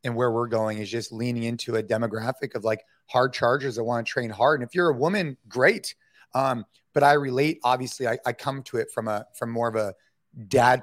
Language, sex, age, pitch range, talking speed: English, male, 30-49, 115-140 Hz, 235 wpm